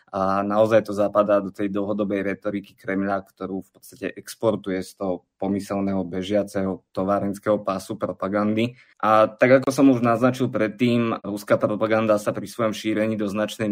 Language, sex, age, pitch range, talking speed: Slovak, male, 20-39, 100-110 Hz, 155 wpm